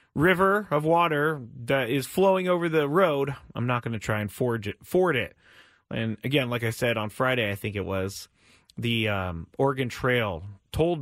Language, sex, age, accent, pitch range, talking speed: English, male, 30-49, American, 115-165 Hz, 190 wpm